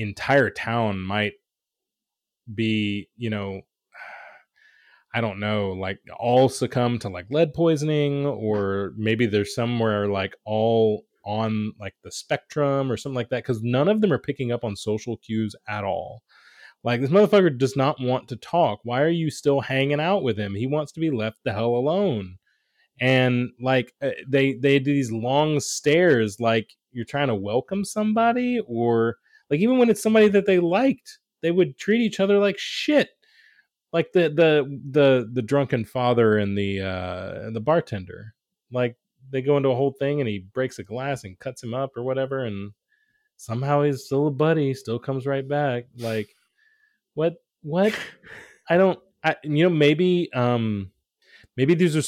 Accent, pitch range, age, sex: American, 110-155 Hz, 20-39, male